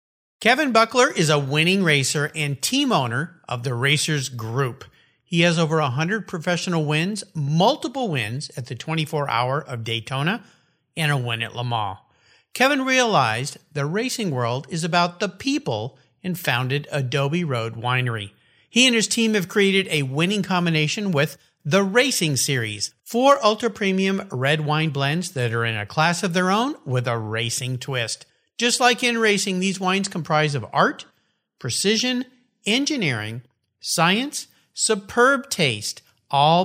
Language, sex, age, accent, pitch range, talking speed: English, male, 50-69, American, 130-205 Hz, 150 wpm